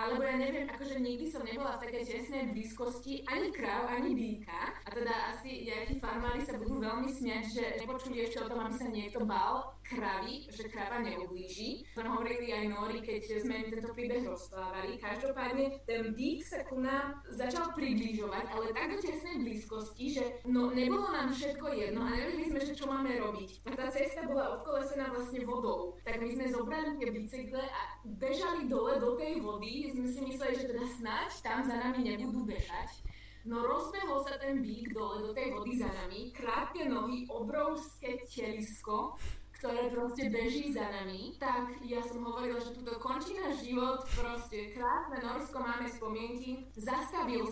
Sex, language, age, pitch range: female, Slovak, 20-39, 225-265 Hz